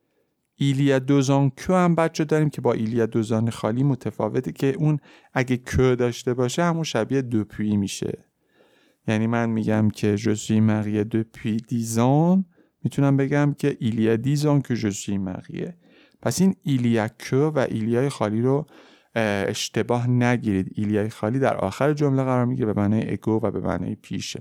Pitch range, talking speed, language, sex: 105-140 Hz, 150 wpm, Persian, male